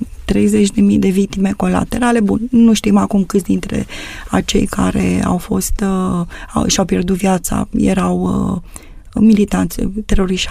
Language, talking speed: Romanian, 130 wpm